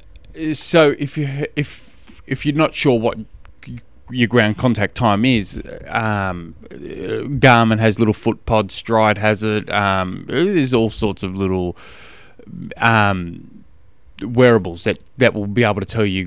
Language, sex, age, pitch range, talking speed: English, male, 20-39, 95-130 Hz, 145 wpm